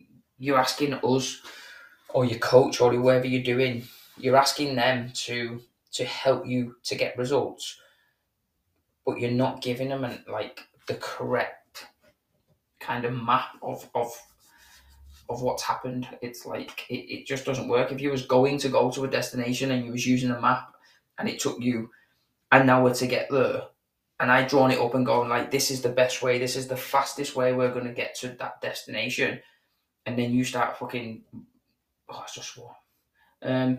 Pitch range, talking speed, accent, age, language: 125-135 Hz, 170 wpm, British, 20-39, English